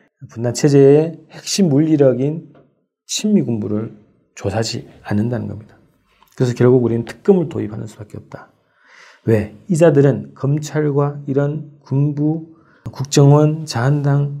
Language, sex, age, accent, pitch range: Korean, male, 40-59, native, 115-150 Hz